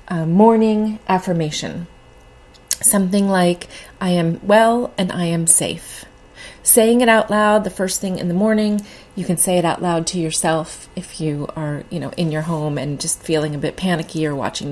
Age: 30-49